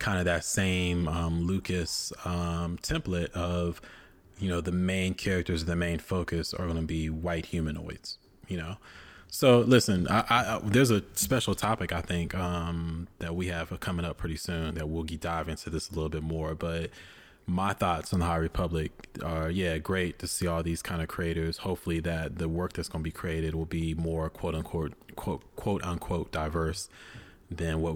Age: 20-39